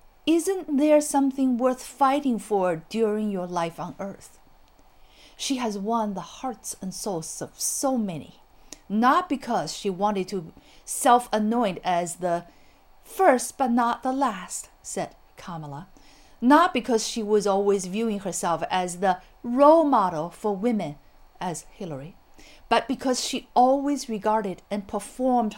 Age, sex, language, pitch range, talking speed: 50-69, female, English, 180-245 Hz, 135 wpm